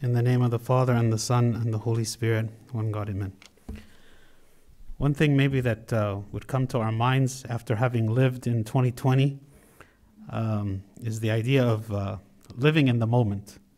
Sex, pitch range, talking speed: male, 115-135 Hz, 180 wpm